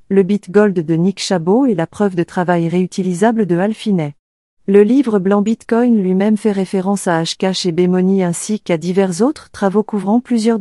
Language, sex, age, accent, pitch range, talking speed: French, female, 40-59, French, 180-215 Hz, 175 wpm